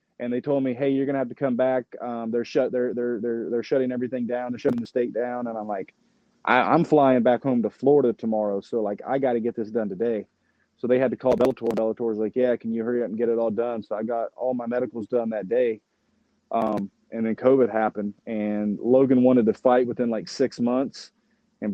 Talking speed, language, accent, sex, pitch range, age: 250 wpm, English, American, male, 115-135 Hz, 30-49